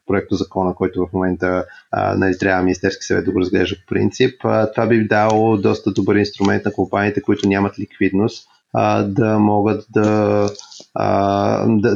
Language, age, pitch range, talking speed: Bulgarian, 30-49, 100-110 Hz, 155 wpm